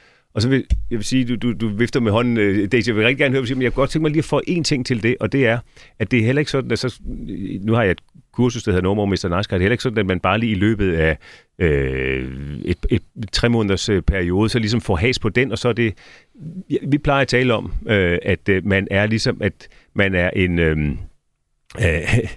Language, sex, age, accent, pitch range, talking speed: Danish, male, 40-59, native, 95-125 Hz, 265 wpm